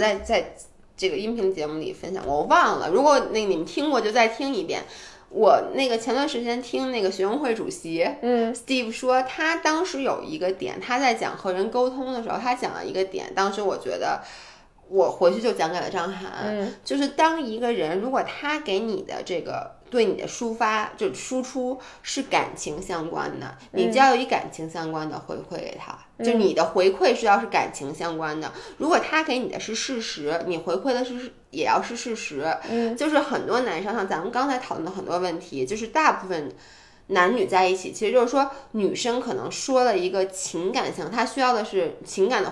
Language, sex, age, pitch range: Chinese, female, 20-39, 190-260 Hz